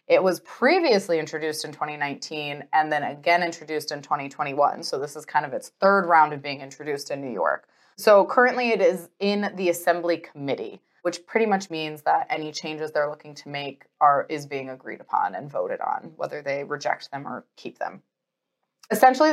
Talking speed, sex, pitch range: 190 wpm, female, 155-200 Hz